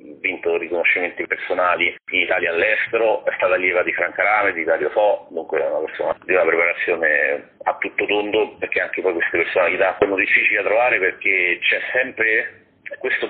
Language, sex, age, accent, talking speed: Italian, male, 40-59, native, 175 wpm